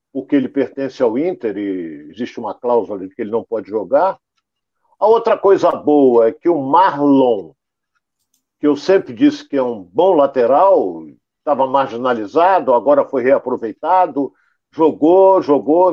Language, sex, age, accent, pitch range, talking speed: Portuguese, male, 60-79, Brazilian, 130-185 Hz, 145 wpm